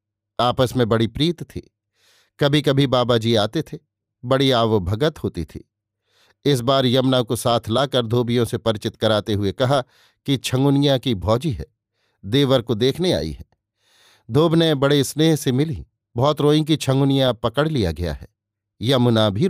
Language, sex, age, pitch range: Hindi, male, 50-69, 110-140 Hz